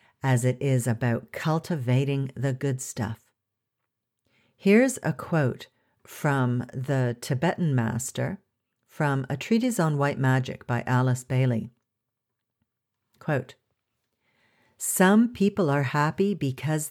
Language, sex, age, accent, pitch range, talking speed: English, female, 50-69, American, 130-170 Hz, 105 wpm